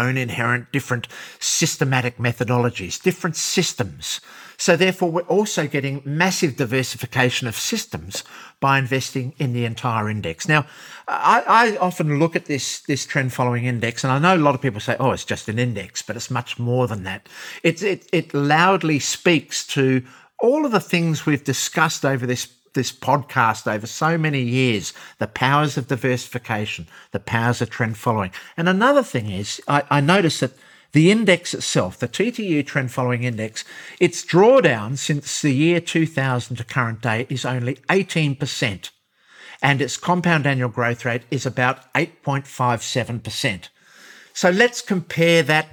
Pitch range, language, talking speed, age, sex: 125-165 Hz, English, 155 wpm, 50-69, male